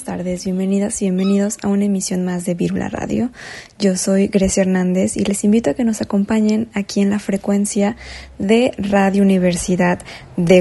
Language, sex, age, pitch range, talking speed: Spanish, female, 20-39, 185-205 Hz, 170 wpm